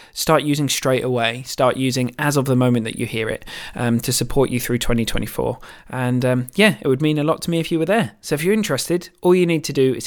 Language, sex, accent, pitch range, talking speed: English, male, British, 125-160 Hz, 260 wpm